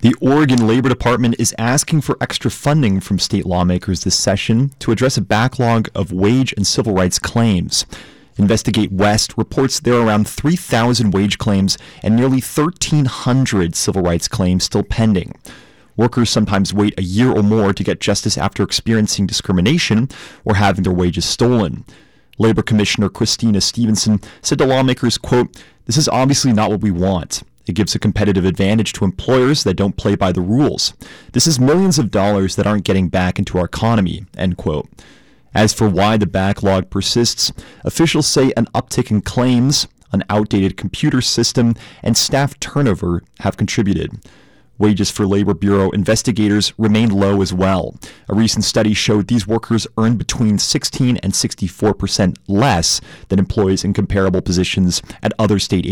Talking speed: 160 wpm